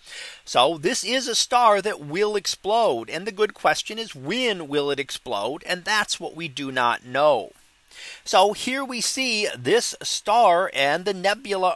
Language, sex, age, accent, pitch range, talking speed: English, male, 40-59, American, 165-225 Hz, 170 wpm